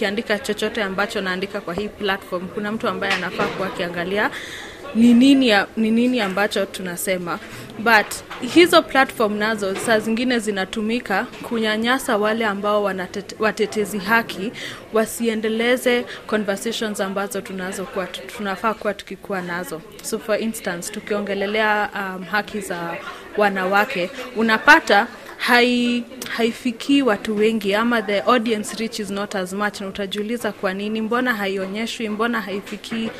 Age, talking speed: 20-39, 120 wpm